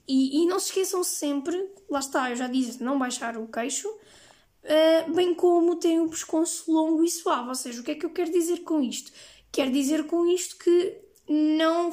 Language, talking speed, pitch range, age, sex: Portuguese, 210 wpm, 275-335 Hz, 10-29, female